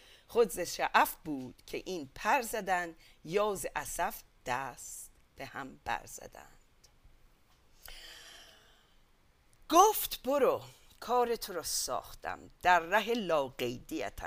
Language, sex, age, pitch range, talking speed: English, female, 50-69, 160-220 Hz, 90 wpm